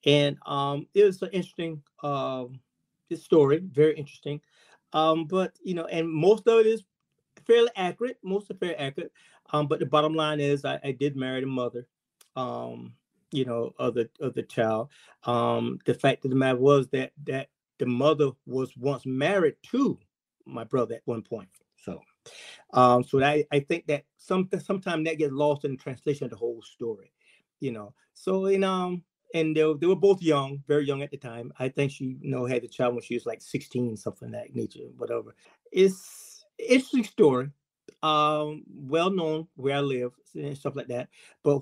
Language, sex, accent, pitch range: English, male, American, 130-165 Hz